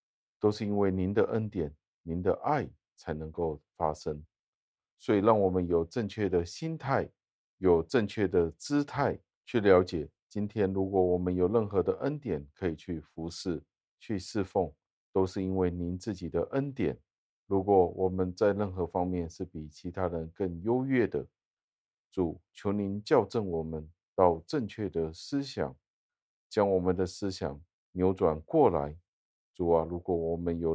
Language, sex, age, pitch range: Chinese, male, 50-69, 85-100 Hz